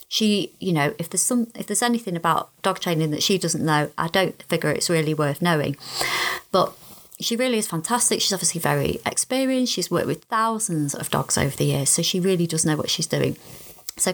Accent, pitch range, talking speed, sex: British, 165-200 Hz, 210 wpm, female